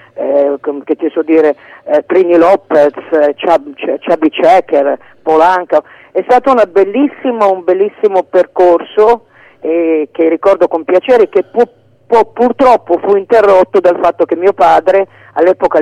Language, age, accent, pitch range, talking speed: Italian, 40-59, native, 160-200 Hz, 130 wpm